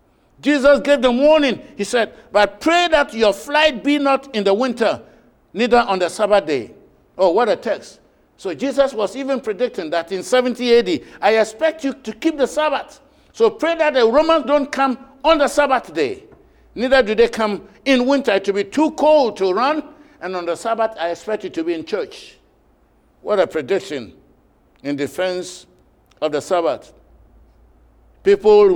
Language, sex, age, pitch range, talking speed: English, male, 60-79, 205-280 Hz, 175 wpm